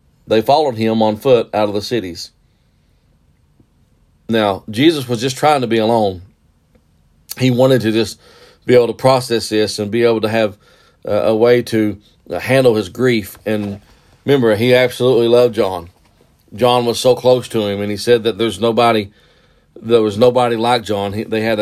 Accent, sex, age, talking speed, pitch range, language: American, male, 40-59, 180 wpm, 110-125 Hz, English